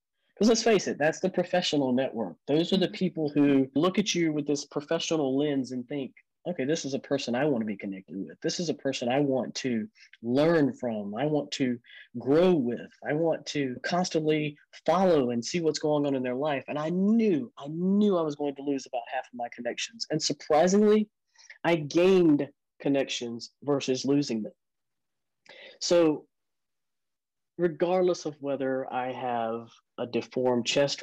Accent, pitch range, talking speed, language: American, 135-180 Hz, 180 wpm, English